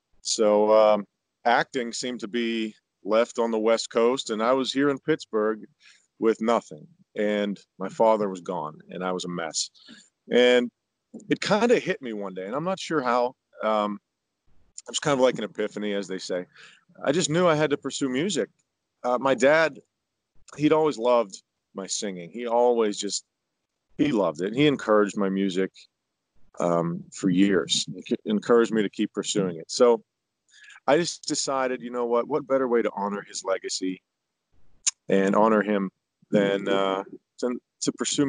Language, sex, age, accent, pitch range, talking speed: English, male, 40-59, American, 105-135 Hz, 175 wpm